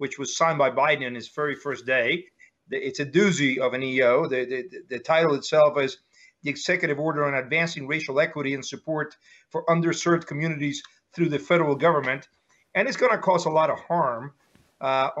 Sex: male